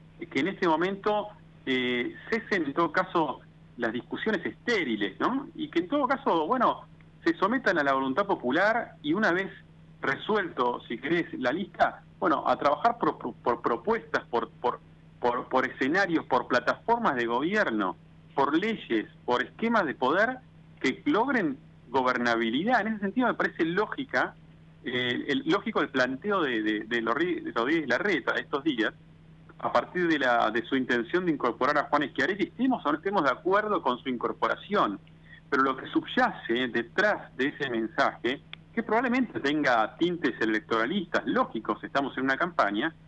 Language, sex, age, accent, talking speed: Italian, male, 40-59, Argentinian, 165 wpm